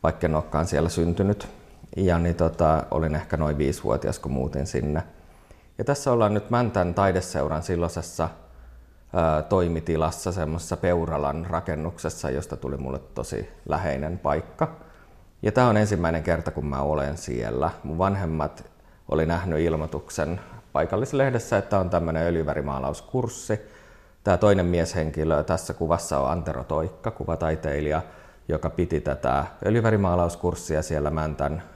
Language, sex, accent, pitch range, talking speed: Finnish, male, native, 75-90 Hz, 125 wpm